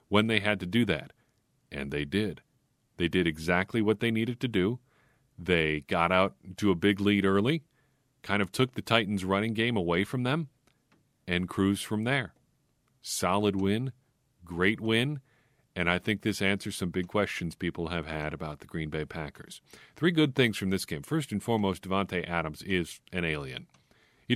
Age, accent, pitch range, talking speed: 40-59, American, 95-125 Hz, 180 wpm